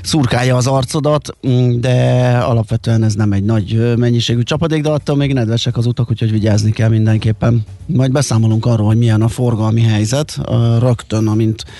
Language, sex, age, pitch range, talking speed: Hungarian, male, 30-49, 110-140 Hz, 160 wpm